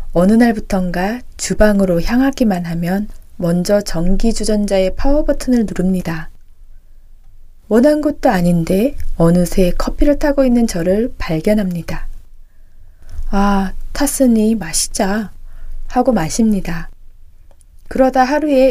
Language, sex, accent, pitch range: Korean, female, native, 170-250 Hz